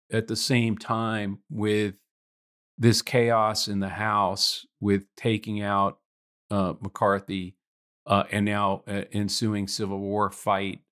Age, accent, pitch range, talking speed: 40-59, American, 100-120 Hz, 125 wpm